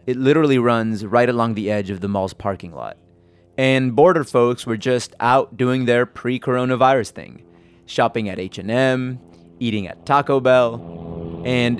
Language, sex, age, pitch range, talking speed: English, male, 30-49, 105-130 Hz, 155 wpm